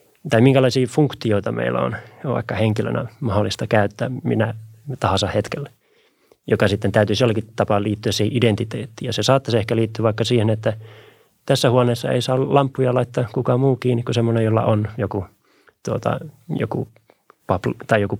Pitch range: 100-120 Hz